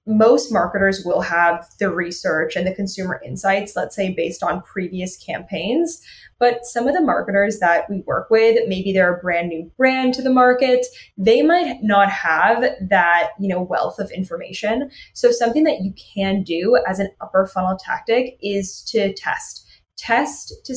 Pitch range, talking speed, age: 185-230 Hz, 175 wpm, 10-29